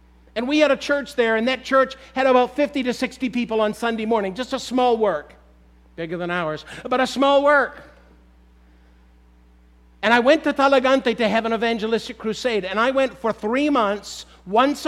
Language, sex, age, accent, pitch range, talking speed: English, male, 50-69, American, 185-250 Hz, 185 wpm